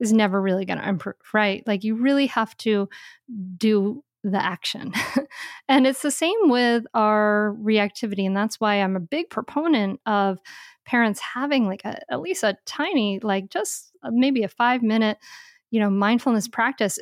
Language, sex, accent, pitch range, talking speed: English, female, American, 205-255 Hz, 175 wpm